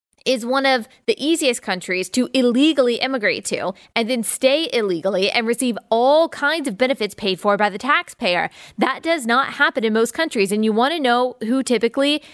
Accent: American